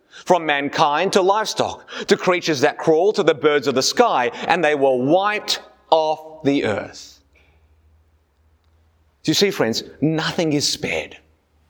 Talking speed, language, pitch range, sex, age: 145 wpm, English, 105-180 Hz, male, 30-49